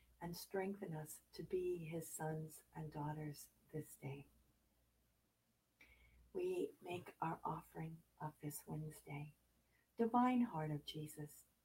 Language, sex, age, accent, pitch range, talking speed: English, female, 50-69, American, 145-175 Hz, 115 wpm